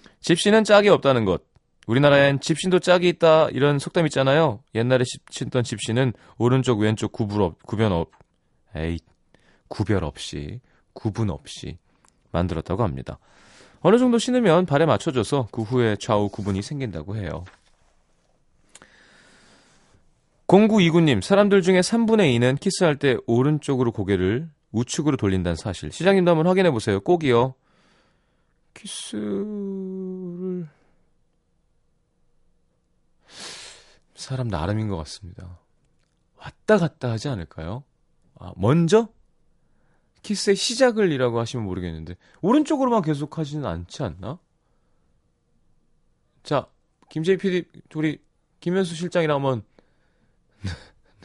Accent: native